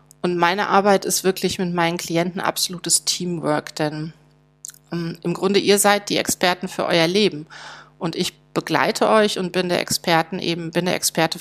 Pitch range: 160-185 Hz